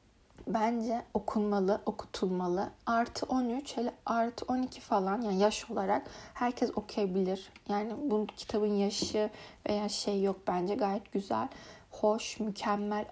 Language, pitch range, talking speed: Turkish, 205-250 Hz, 115 wpm